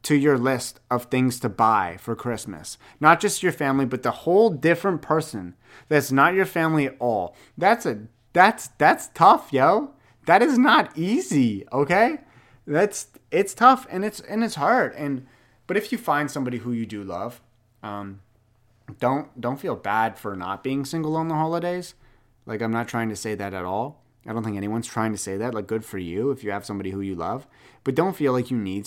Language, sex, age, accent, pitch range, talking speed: English, male, 30-49, American, 110-145 Hz, 205 wpm